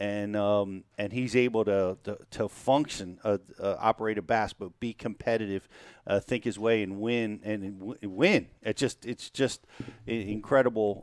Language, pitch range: English, 105-130 Hz